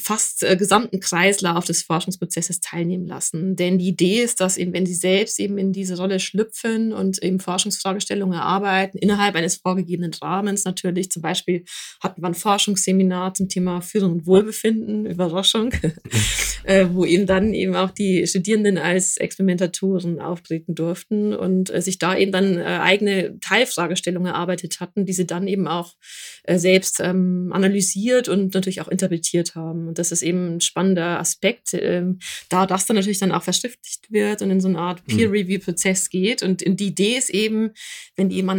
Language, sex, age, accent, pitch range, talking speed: German, female, 20-39, German, 180-200 Hz, 180 wpm